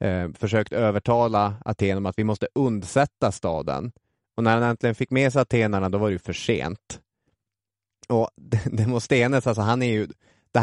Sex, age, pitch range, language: male, 20-39, 110-135 Hz, English